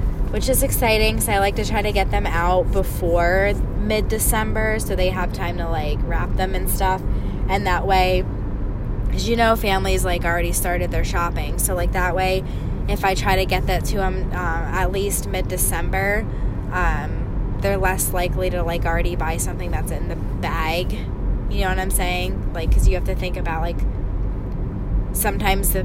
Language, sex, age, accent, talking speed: English, female, 20-39, American, 190 wpm